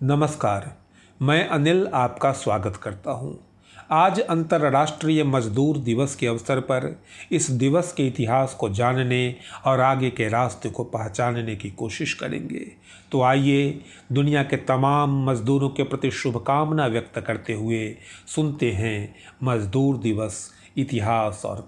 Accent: native